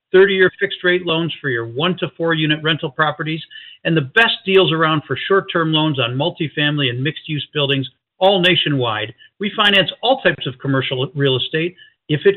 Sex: male